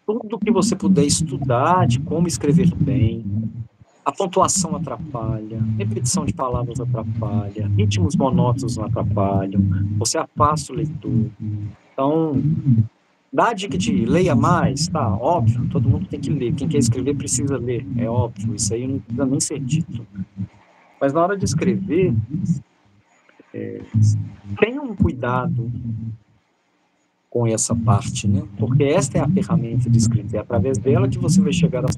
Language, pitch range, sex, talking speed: Portuguese, 110-155 Hz, male, 150 wpm